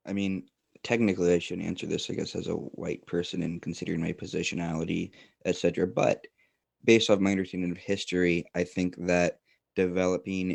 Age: 20-39